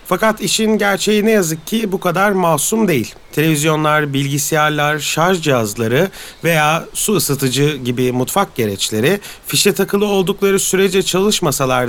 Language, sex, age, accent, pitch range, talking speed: Turkish, male, 30-49, native, 140-195 Hz, 125 wpm